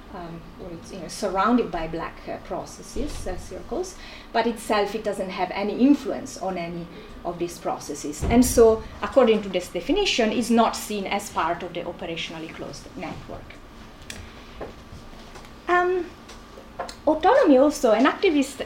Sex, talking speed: female, 150 wpm